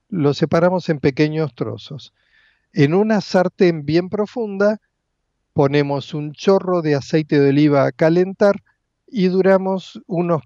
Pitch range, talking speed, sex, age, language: 145-185 Hz, 125 wpm, male, 50-69, Spanish